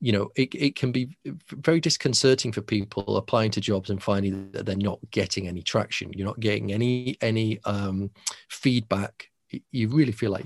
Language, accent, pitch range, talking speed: English, British, 100-120 Hz, 185 wpm